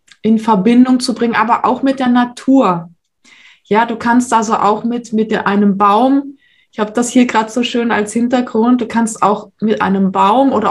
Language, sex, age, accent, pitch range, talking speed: German, female, 20-39, German, 200-245 Hz, 195 wpm